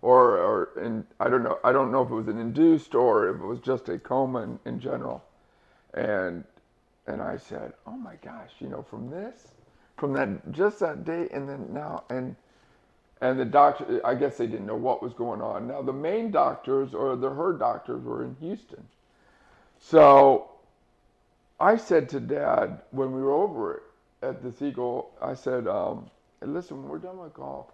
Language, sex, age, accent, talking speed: English, male, 50-69, American, 190 wpm